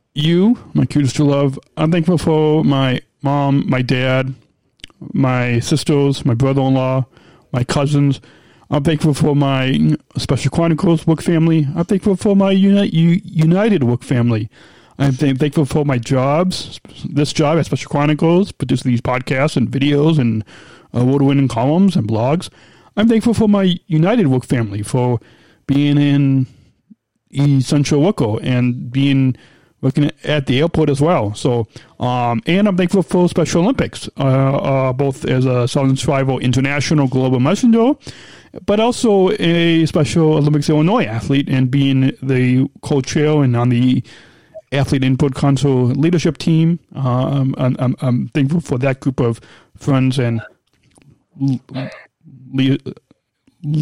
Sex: male